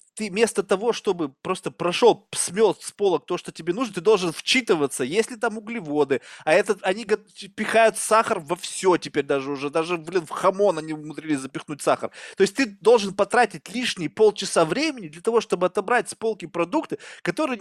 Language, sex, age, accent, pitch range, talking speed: Russian, male, 20-39, native, 165-225 Hz, 185 wpm